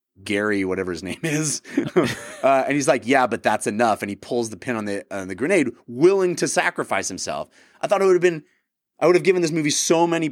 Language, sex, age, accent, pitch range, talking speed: English, male, 30-49, American, 105-165 Hz, 240 wpm